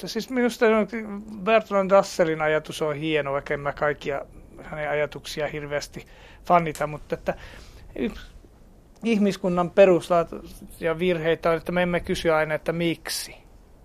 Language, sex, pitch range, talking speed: Finnish, male, 150-185 Hz, 120 wpm